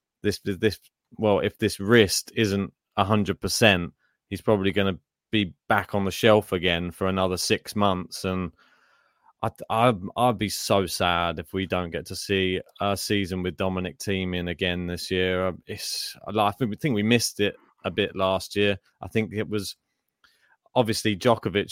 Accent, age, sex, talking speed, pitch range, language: British, 20-39, male, 170 wpm, 95-115 Hz, English